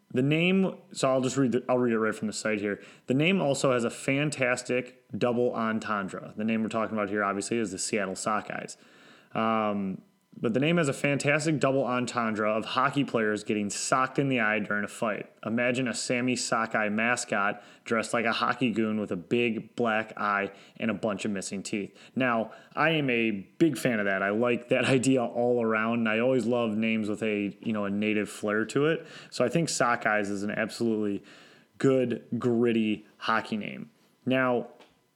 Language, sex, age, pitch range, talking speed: English, male, 20-39, 110-135 Hz, 195 wpm